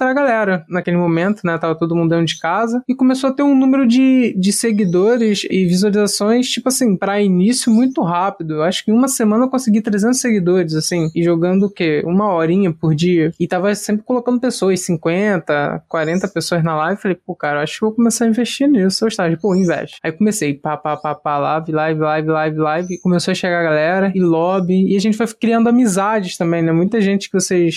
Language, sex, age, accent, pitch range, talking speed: Portuguese, male, 20-39, Brazilian, 165-225 Hz, 225 wpm